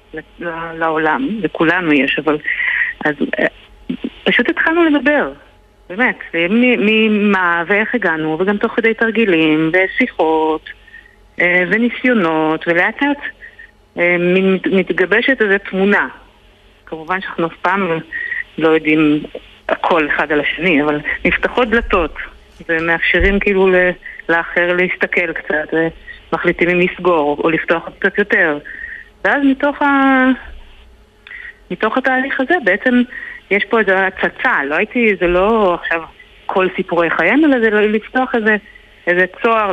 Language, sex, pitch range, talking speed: Hebrew, female, 170-245 Hz, 110 wpm